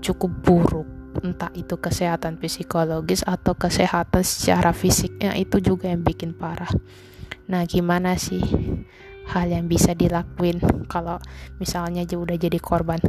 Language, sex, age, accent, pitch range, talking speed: Indonesian, female, 20-39, native, 160-175 Hz, 130 wpm